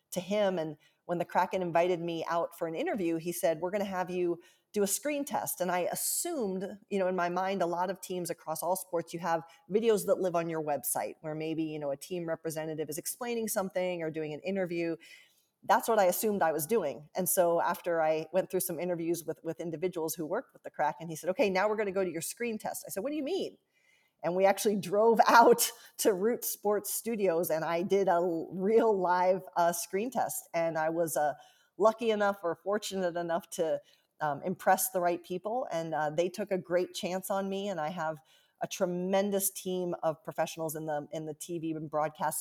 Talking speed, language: 220 wpm, English